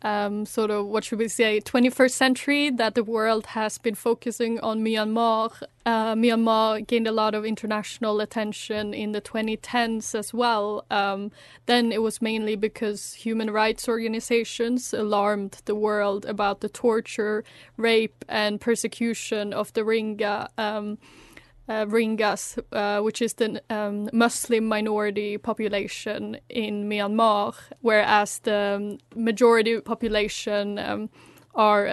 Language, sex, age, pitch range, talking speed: English, female, 10-29, 210-235 Hz, 130 wpm